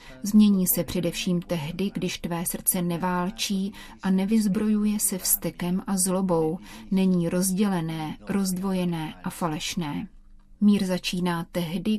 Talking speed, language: 110 wpm, Czech